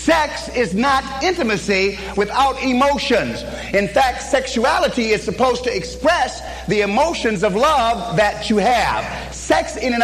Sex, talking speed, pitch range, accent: male, 135 wpm, 230-335 Hz, American